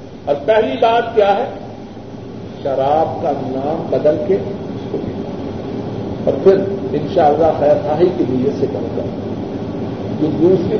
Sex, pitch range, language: male, 145-195 Hz, Urdu